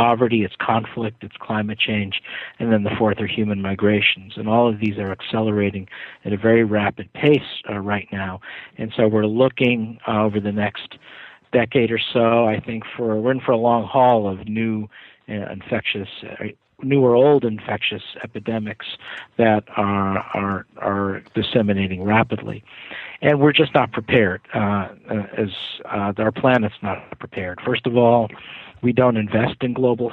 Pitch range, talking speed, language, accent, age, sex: 105-120 Hz, 165 wpm, English, American, 50-69, male